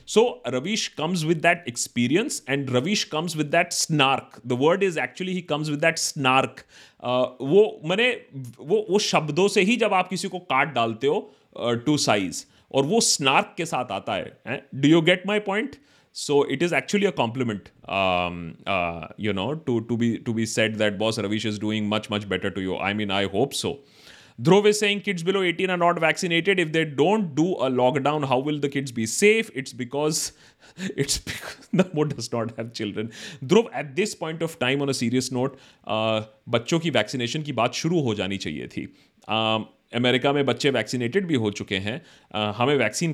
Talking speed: 205 wpm